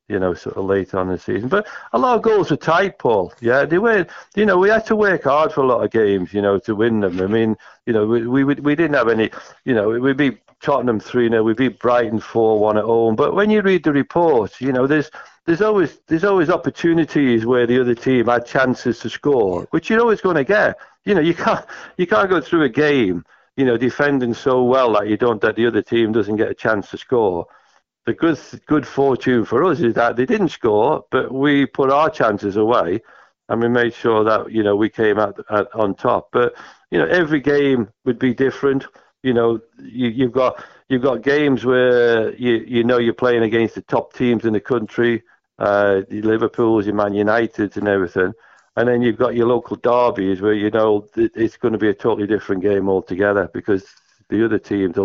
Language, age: English, 50-69